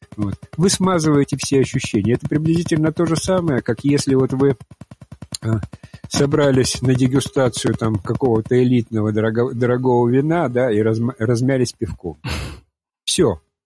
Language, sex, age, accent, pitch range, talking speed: Russian, male, 50-69, native, 110-150 Hz, 110 wpm